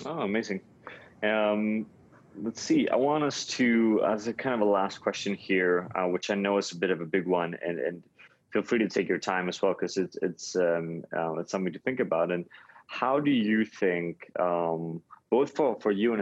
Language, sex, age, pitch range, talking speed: English, male, 20-39, 85-100 Hz, 220 wpm